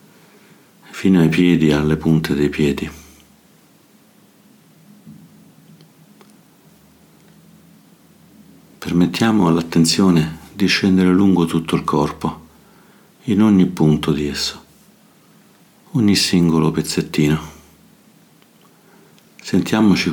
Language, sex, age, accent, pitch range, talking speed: Italian, male, 60-79, native, 75-95 Hz, 70 wpm